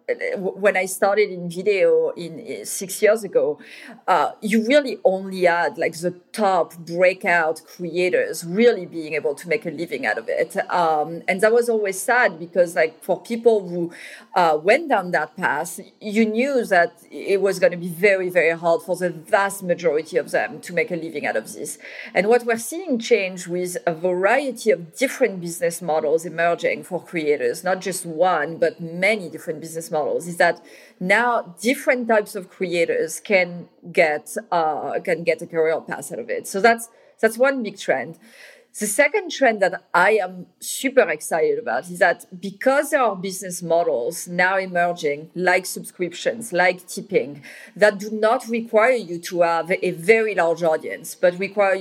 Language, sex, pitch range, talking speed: English, female, 170-230 Hz, 175 wpm